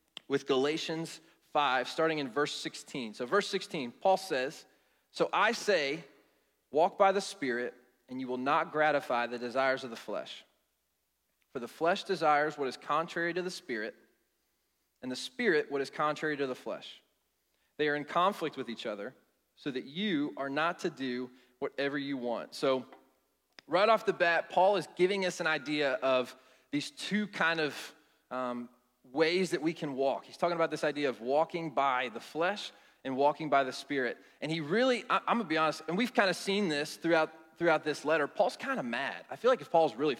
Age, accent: 20-39, American